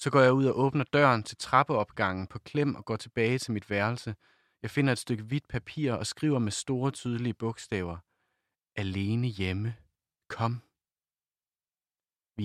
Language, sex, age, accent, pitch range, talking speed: Danish, male, 30-49, native, 100-125 Hz, 160 wpm